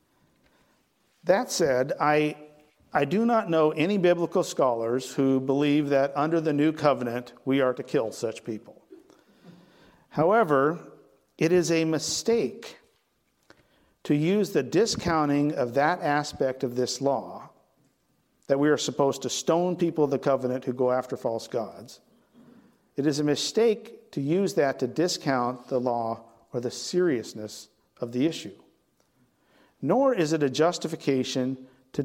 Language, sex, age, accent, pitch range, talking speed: English, male, 50-69, American, 130-170 Hz, 140 wpm